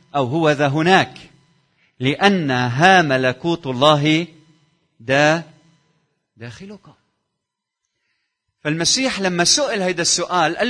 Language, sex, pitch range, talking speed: Arabic, male, 135-185 Hz, 90 wpm